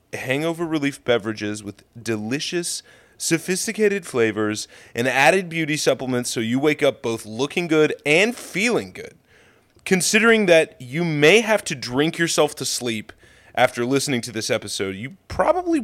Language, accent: English, American